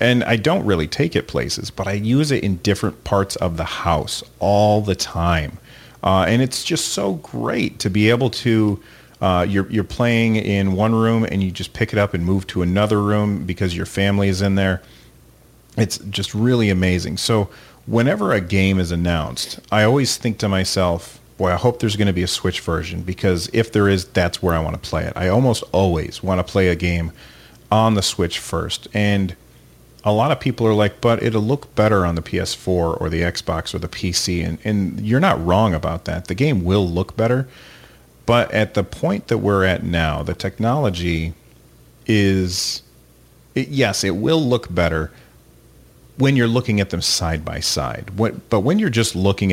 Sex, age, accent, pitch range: male, 40-59, American, 90-115 Hz